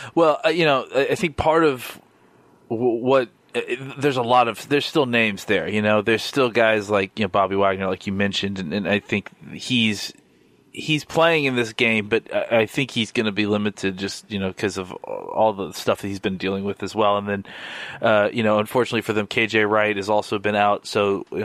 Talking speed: 220 wpm